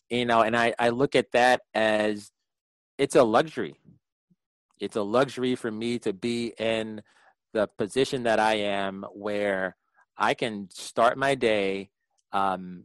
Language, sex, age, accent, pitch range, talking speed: English, male, 30-49, American, 100-115 Hz, 150 wpm